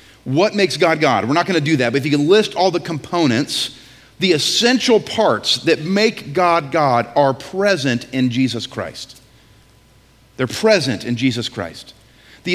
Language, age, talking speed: English, 40-59, 170 wpm